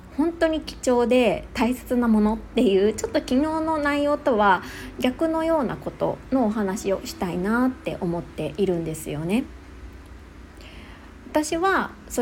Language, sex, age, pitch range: Japanese, female, 20-39, 175-260 Hz